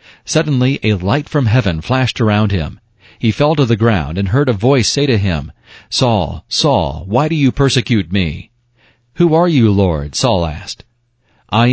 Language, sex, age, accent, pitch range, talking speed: English, male, 40-59, American, 100-125 Hz, 175 wpm